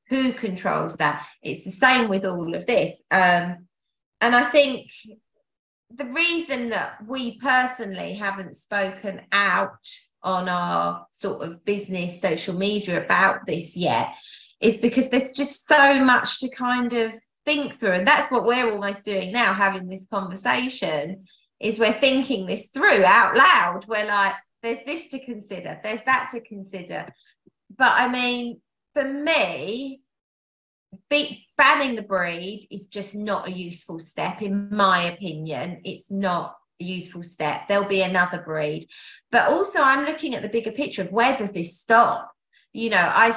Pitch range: 195-260 Hz